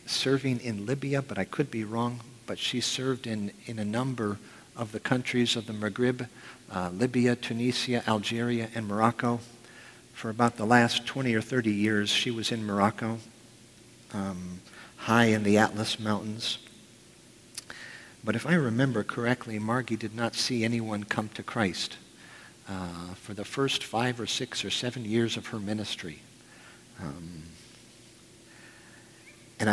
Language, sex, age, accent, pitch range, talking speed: English, male, 50-69, American, 105-120 Hz, 145 wpm